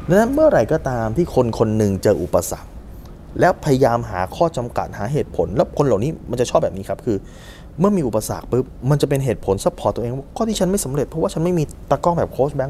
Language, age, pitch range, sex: Thai, 20-39, 95-150 Hz, male